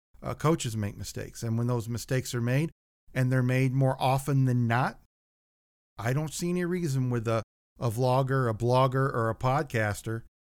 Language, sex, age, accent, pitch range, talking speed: English, male, 50-69, American, 115-135 Hz, 180 wpm